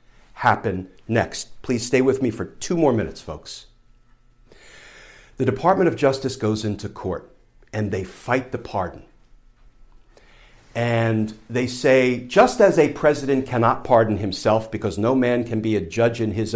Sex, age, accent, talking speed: male, 50-69, American, 150 wpm